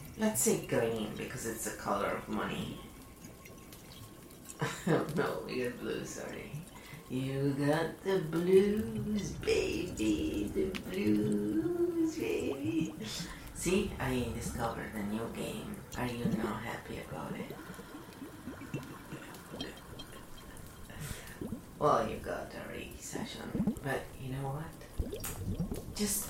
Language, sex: English, female